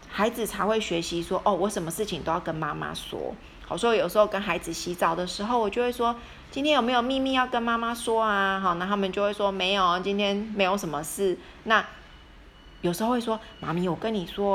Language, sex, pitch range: Chinese, female, 175-210 Hz